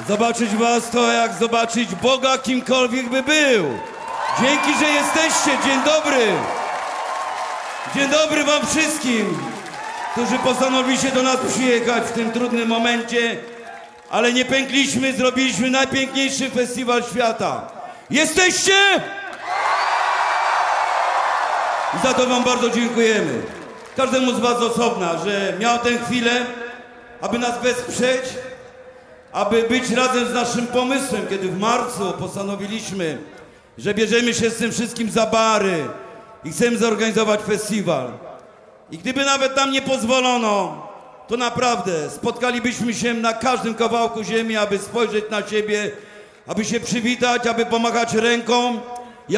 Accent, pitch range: native, 230-255 Hz